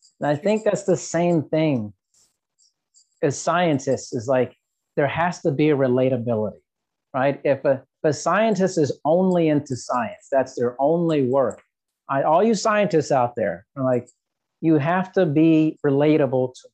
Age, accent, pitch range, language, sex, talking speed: 40-59, American, 135-165 Hz, English, male, 160 wpm